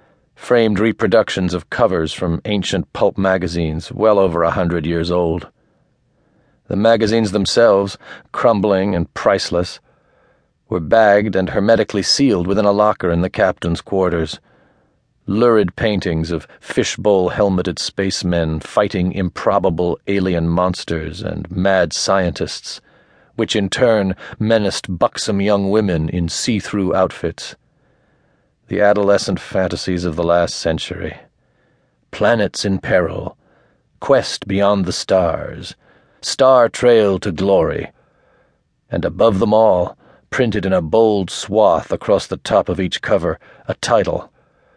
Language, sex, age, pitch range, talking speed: English, male, 40-59, 85-105 Hz, 120 wpm